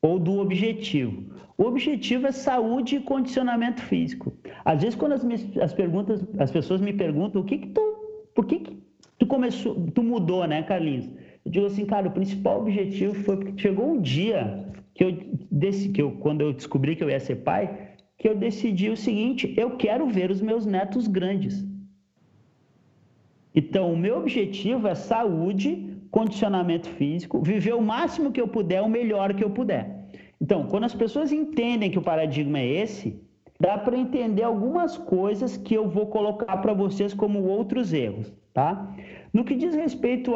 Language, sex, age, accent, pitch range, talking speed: Portuguese, male, 40-59, Brazilian, 165-230 Hz, 175 wpm